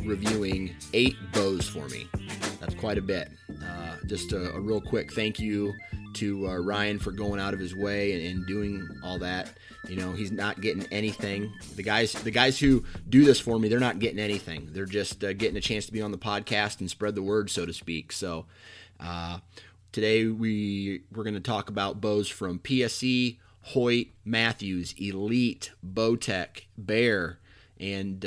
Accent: American